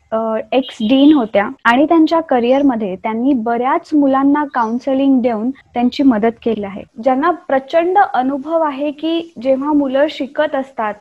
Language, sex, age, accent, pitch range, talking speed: Marathi, female, 20-39, native, 245-295 Hz, 130 wpm